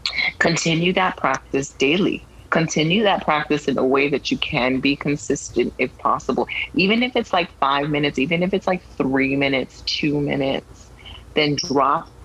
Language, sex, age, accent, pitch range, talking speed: English, female, 30-49, American, 130-155 Hz, 160 wpm